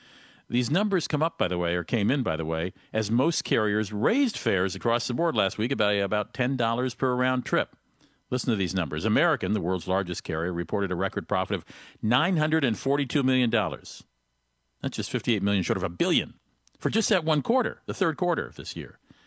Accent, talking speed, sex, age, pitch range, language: American, 200 wpm, male, 50-69, 95-130 Hz, English